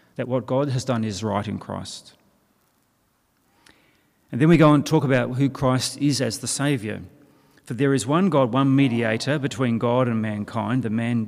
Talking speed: 185 wpm